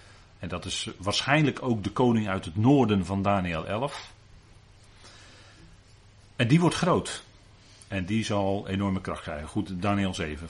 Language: Dutch